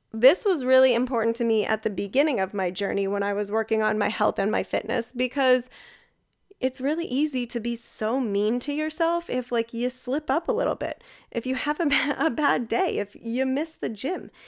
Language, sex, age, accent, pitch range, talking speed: English, female, 10-29, American, 225-275 Hz, 210 wpm